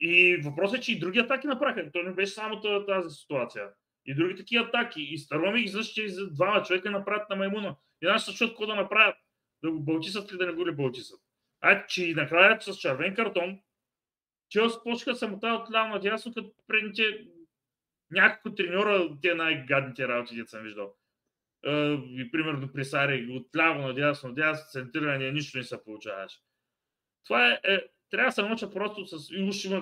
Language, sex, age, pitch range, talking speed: Bulgarian, male, 30-49, 135-200 Hz, 175 wpm